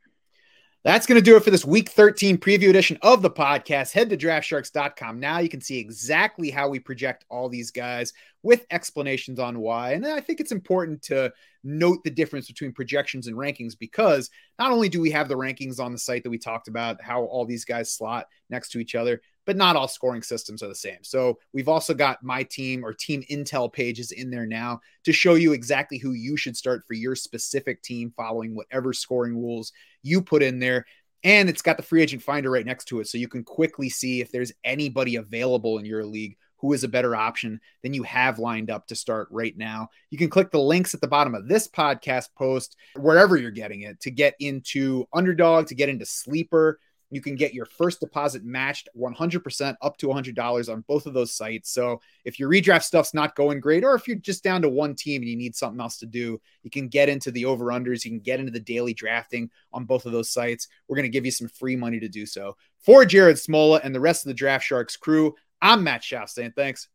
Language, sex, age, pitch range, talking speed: English, male, 30-49, 120-155 Hz, 230 wpm